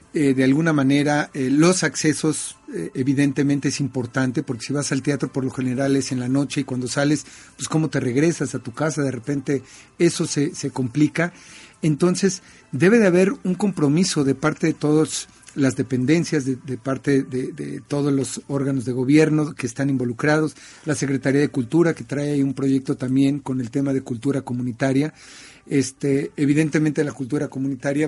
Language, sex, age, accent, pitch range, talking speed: Spanish, male, 50-69, Mexican, 135-155 Hz, 180 wpm